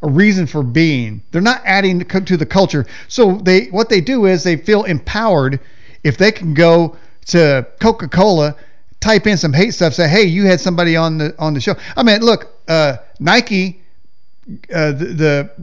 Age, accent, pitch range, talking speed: 40-59, American, 160-210 Hz, 190 wpm